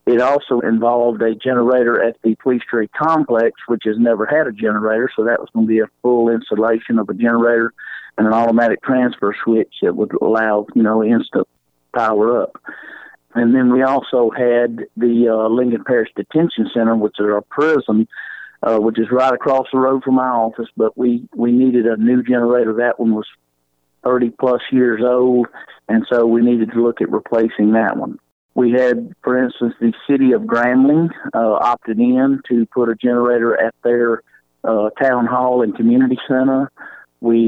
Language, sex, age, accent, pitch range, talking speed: English, male, 50-69, American, 115-125 Hz, 185 wpm